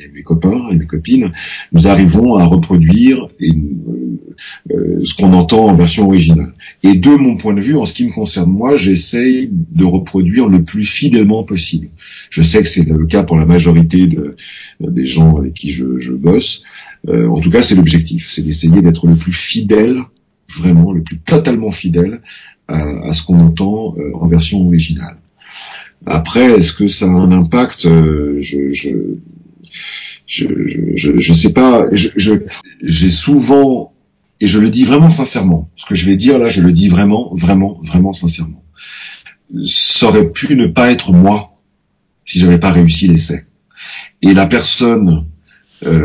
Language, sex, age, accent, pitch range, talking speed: French, male, 40-59, French, 80-105 Hz, 175 wpm